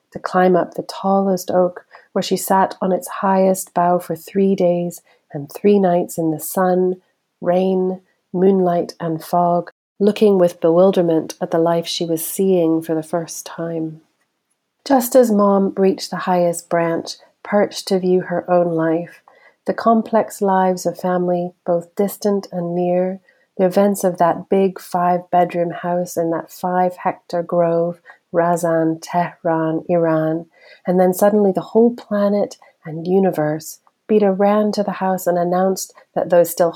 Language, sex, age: English, female, 40-59